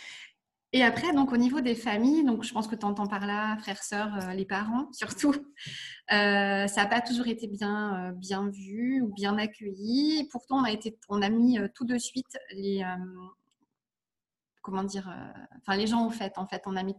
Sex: female